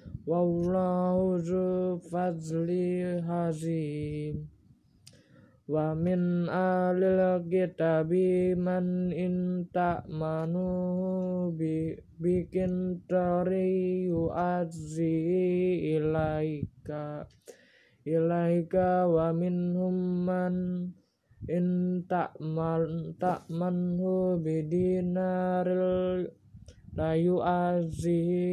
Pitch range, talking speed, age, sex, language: 165-180 Hz, 40 wpm, 20-39, male, Indonesian